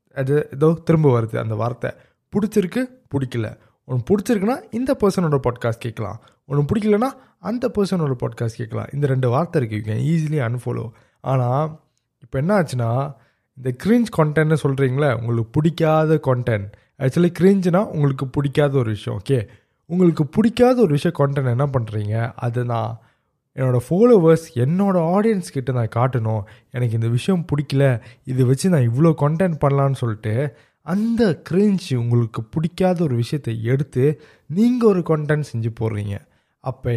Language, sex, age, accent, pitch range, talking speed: Tamil, male, 20-39, native, 120-175 Hz, 135 wpm